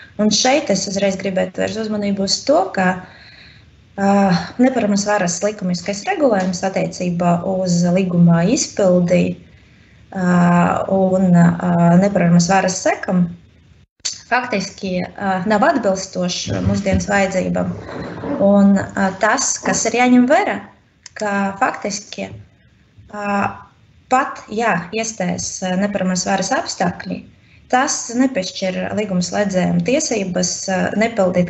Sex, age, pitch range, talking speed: female, 20-39, 175-205 Hz, 95 wpm